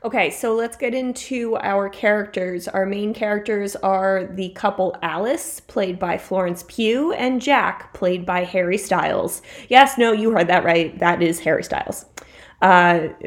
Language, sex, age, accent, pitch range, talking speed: English, female, 20-39, American, 180-230 Hz, 160 wpm